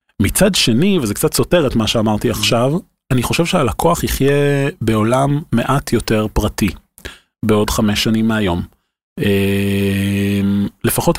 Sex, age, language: male, 30-49, Hebrew